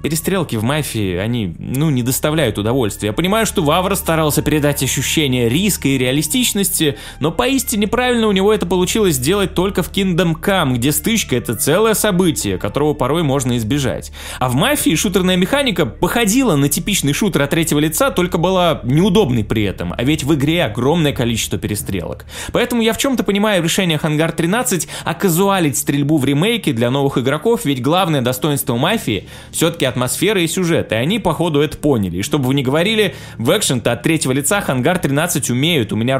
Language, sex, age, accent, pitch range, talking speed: Russian, male, 20-39, native, 130-190 Hz, 185 wpm